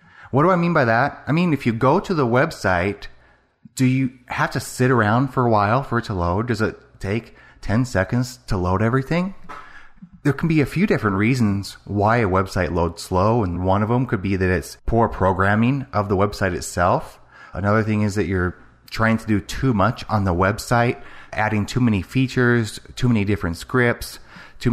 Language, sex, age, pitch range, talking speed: English, male, 30-49, 95-125 Hz, 200 wpm